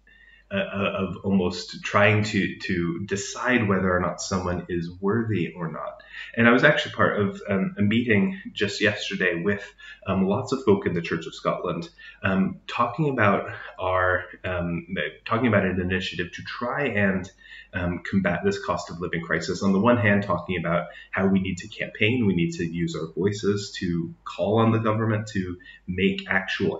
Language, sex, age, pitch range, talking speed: English, male, 30-49, 90-110 Hz, 180 wpm